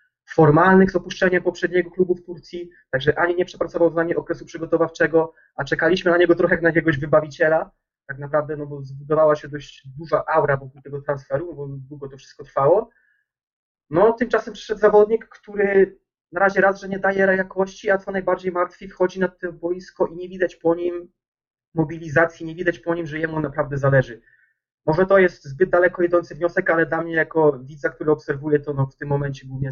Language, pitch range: Polish, 140-175 Hz